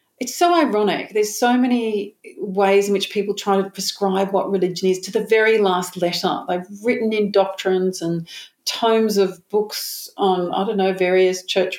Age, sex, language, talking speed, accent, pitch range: 40-59, female, English, 180 wpm, Australian, 170-200 Hz